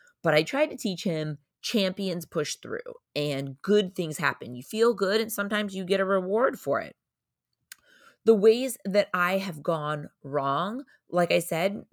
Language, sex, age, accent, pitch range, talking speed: English, female, 30-49, American, 150-205 Hz, 170 wpm